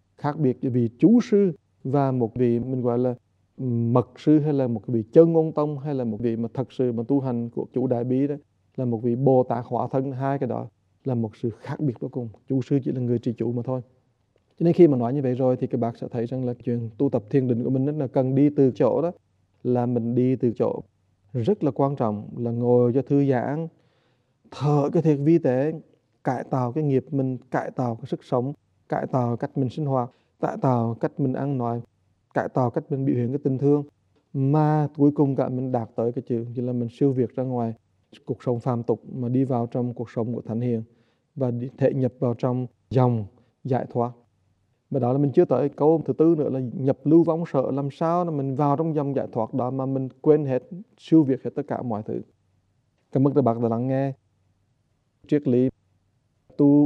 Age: 20-39